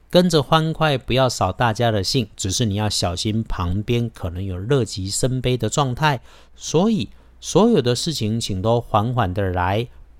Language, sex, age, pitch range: Chinese, male, 50-69, 95-125 Hz